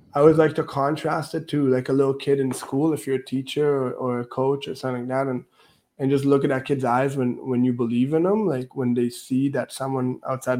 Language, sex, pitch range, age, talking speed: English, male, 125-140 Hz, 20-39, 260 wpm